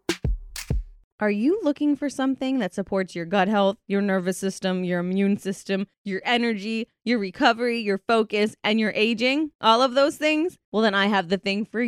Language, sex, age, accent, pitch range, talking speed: English, female, 20-39, American, 195-260 Hz, 180 wpm